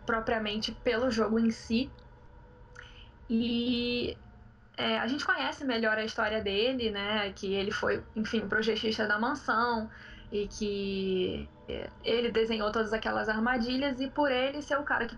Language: Portuguese